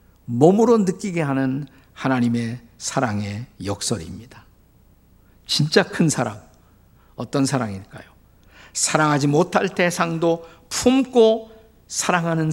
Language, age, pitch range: Korean, 50-69, 100-165 Hz